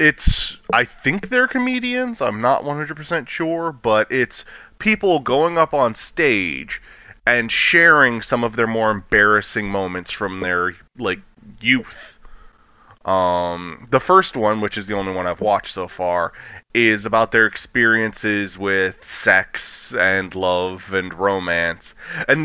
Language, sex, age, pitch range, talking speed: English, male, 20-39, 100-150 Hz, 140 wpm